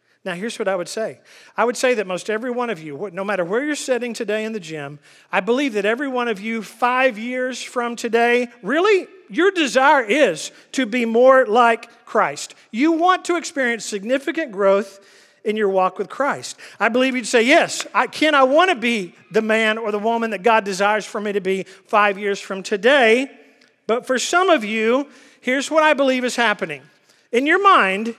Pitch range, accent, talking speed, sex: 220-280 Hz, American, 205 wpm, male